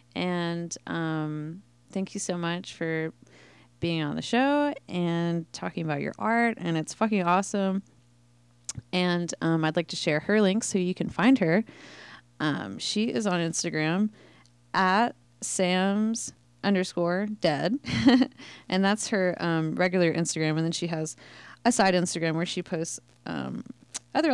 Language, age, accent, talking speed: English, 20-39, American, 150 wpm